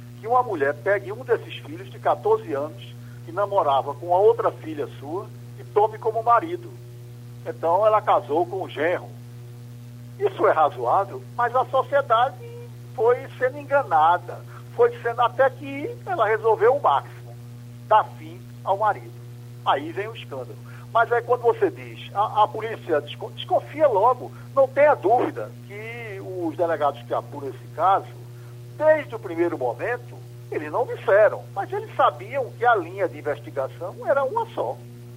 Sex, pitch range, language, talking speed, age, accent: male, 120-200 Hz, Portuguese, 155 wpm, 60-79, Brazilian